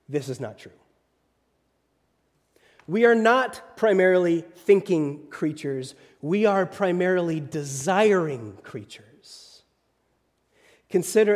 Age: 30-49